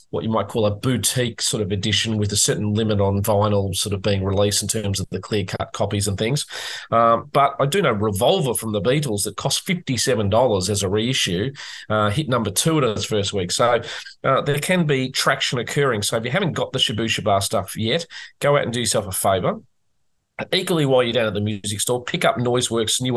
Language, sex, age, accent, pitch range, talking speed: English, male, 30-49, Australian, 105-135 Hz, 225 wpm